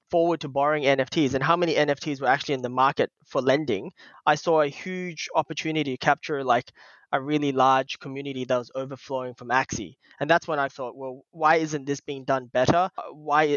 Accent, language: Australian, English